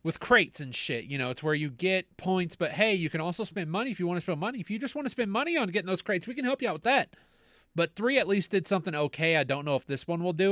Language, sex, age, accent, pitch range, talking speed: English, male, 30-49, American, 160-210 Hz, 320 wpm